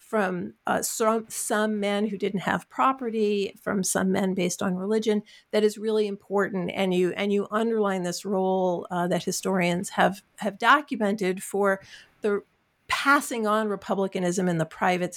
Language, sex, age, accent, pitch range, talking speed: English, female, 50-69, American, 180-225 Hz, 160 wpm